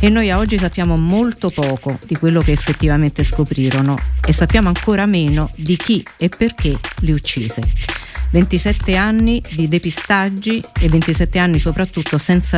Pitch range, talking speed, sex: 150-190 Hz, 150 wpm, female